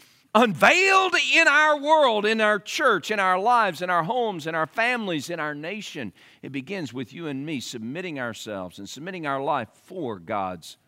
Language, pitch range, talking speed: English, 125-195 Hz, 180 wpm